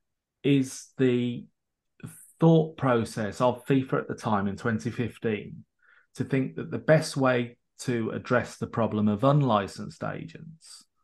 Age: 30-49